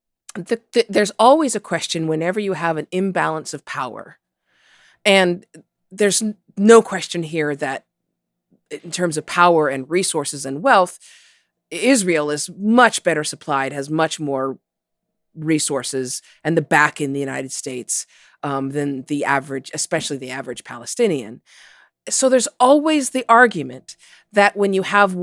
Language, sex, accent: English, female, American